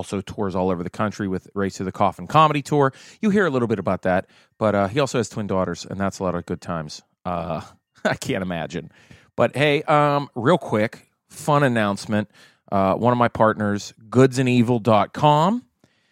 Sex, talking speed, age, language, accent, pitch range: male, 190 wpm, 30-49, English, American, 95-125 Hz